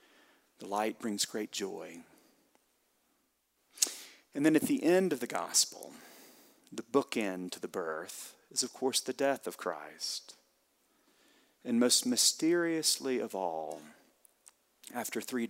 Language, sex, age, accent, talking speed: English, male, 40-59, American, 125 wpm